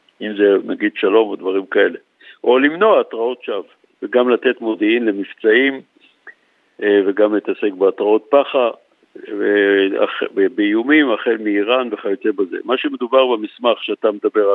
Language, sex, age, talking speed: Hebrew, male, 60-79, 120 wpm